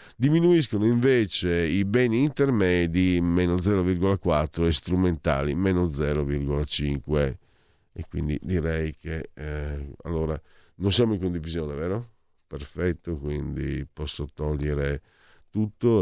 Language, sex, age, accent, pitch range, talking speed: Italian, male, 50-69, native, 75-90 Hz, 100 wpm